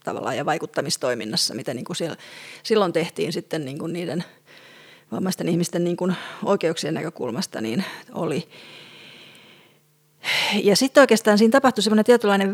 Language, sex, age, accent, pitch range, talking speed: English, female, 30-49, Finnish, 165-200 Hz, 130 wpm